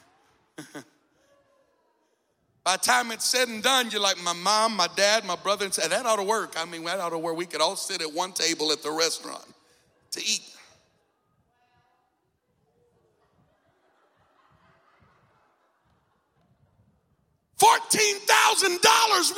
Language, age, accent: English, 50-69, American